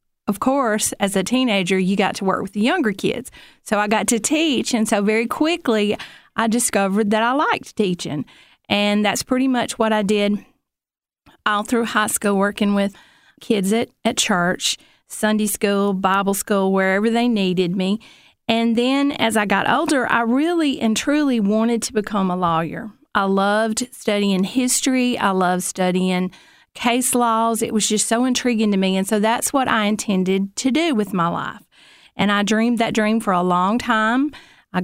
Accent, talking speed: American, 180 wpm